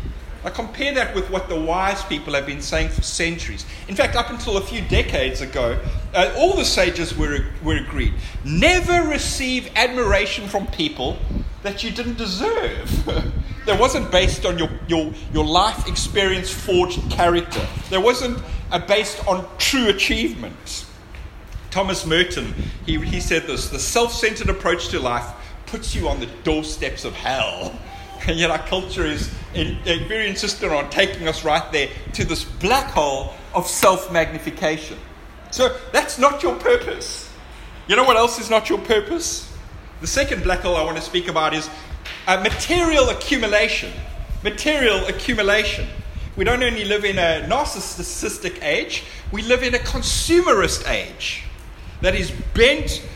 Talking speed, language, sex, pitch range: 150 wpm, English, male, 160-245 Hz